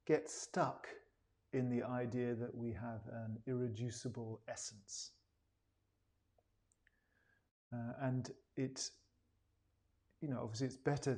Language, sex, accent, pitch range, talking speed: English, male, British, 105-135 Hz, 100 wpm